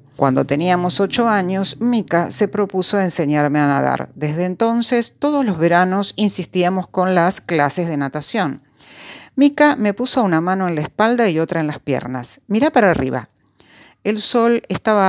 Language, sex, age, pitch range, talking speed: Spanish, female, 40-59, 145-210 Hz, 160 wpm